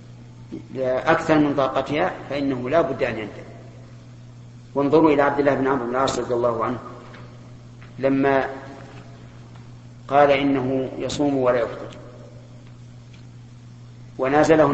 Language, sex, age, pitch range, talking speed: Arabic, male, 40-59, 120-145 Hz, 105 wpm